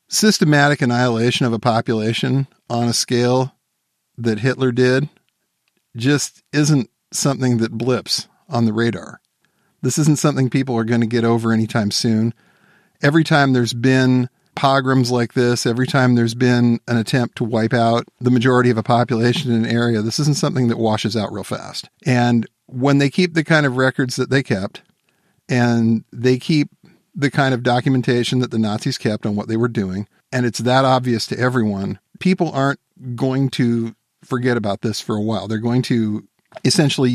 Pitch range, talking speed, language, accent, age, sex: 115-135 Hz, 175 wpm, English, American, 50-69, male